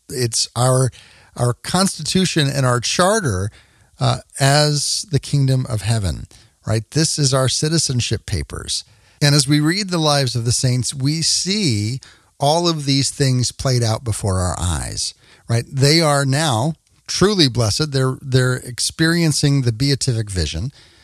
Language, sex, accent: English, male, American